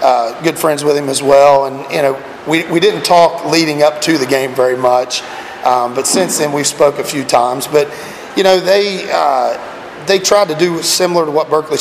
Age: 40-59